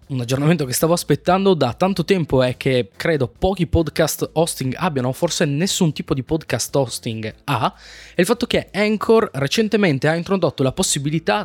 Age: 20-39